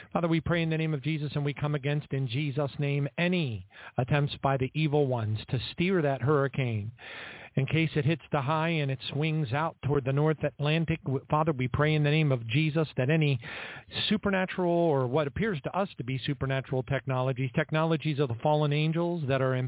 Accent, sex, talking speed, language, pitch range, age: American, male, 205 wpm, English, 140-170 Hz, 40-59